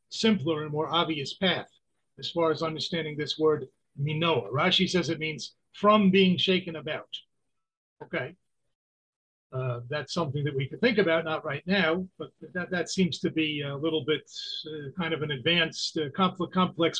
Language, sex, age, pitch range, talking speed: English, male, 50-69, 155-190 Hz, 170 wpm